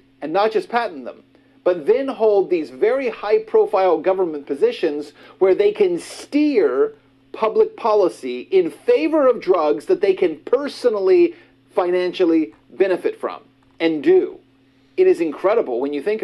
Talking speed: 145 wpm